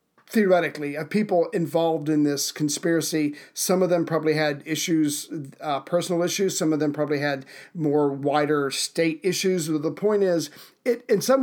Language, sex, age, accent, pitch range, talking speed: English, male, 50-69, American, 155-180 Hz, 170 wpm